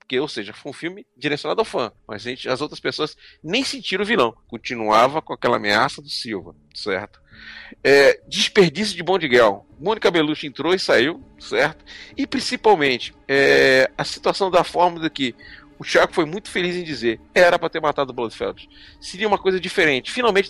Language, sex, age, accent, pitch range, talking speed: Portuguese, male, 40-59, Brazilian, 145-205 Hz, 175 wpm